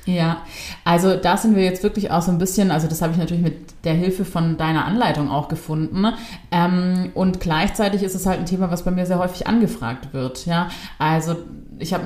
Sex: female